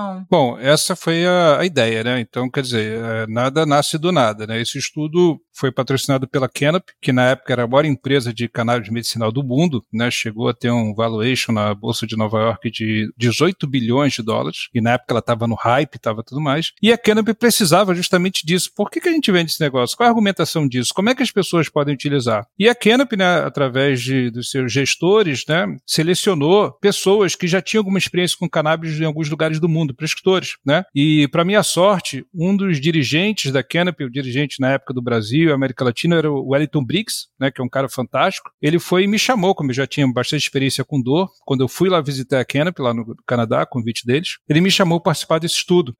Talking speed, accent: 220 wpm, Brazilian